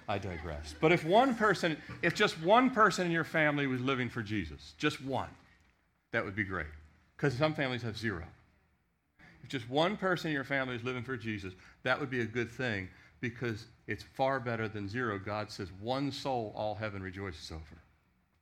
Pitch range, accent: 90-125 Hz, American